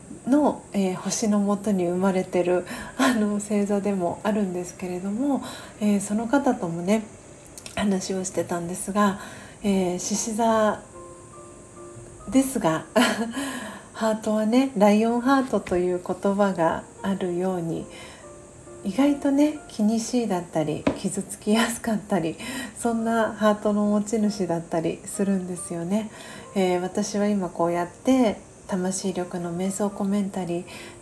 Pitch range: 180-215 Hz